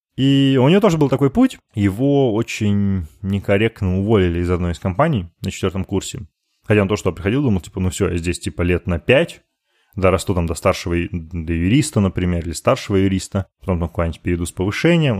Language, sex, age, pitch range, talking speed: Russian, male, 20-39, 95-125 Hz, 195 wpm